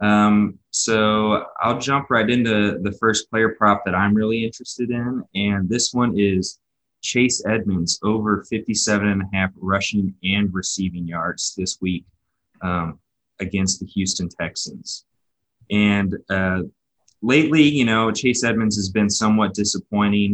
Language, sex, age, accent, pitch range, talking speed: English, male, 20-39, American, 95-110 Hz, 140 wpm